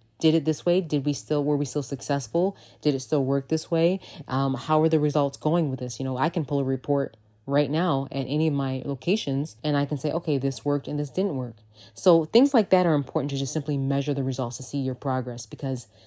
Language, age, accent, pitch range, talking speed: English, 20-39, American, 135-160 Hz, 250 wpm